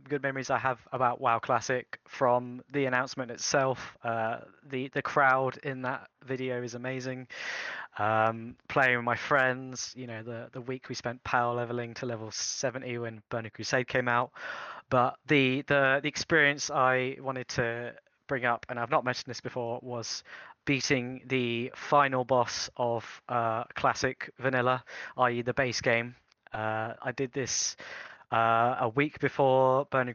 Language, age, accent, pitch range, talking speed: English, 20-39, British, 120-130 Hz, 160 wpm